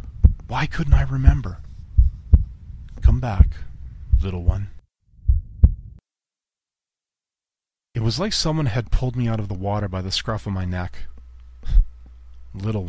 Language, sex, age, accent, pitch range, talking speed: English, male, 30-49, American, 65-105 Hz, 120 wpm